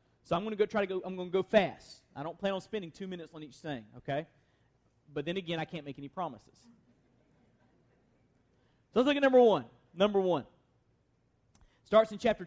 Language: English